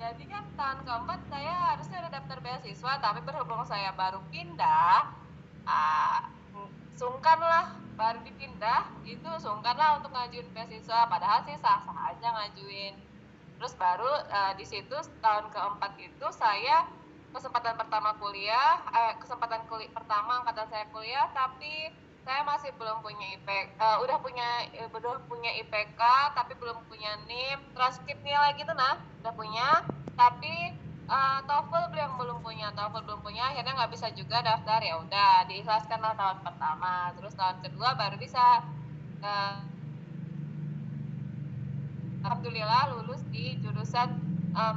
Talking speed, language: 135 wpm, Indonesian